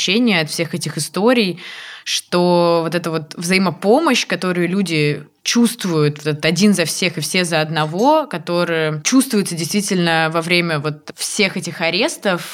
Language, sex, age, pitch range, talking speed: Russian, female, 20-39, 160-185 Hz, 135 wpm